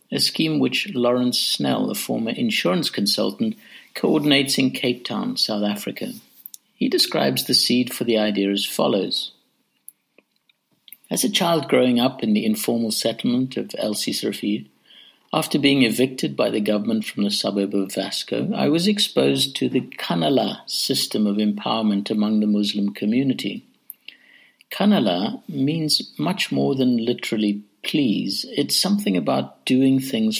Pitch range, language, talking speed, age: 105-150 Hz, English, 140 wpm, 50-69